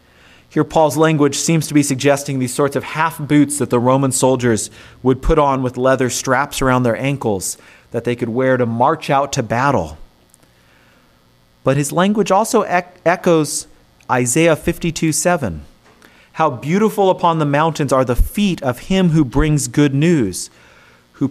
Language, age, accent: English, 30-49, American